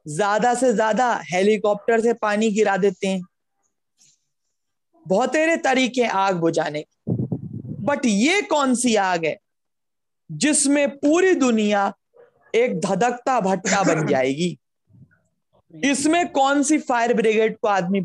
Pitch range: 190-280 Hz